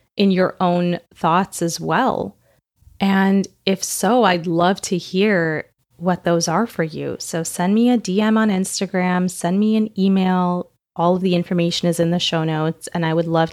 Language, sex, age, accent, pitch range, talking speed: English, female, 30-49, American, 170-210 Hz, 185 wpm